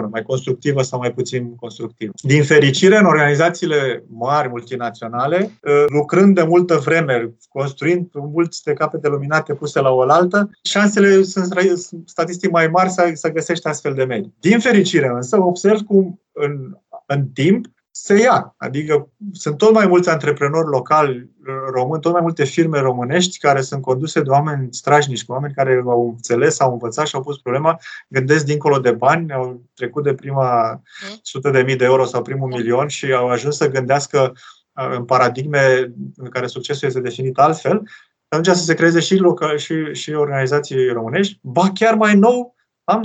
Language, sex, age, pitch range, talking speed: Romanian, male, 30-49, 135-180 Hz, 165 wpm